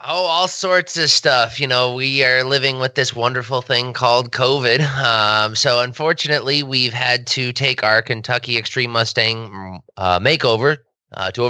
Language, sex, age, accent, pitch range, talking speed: English, male, 20-39, American, 105-135 Hz, 165 wpm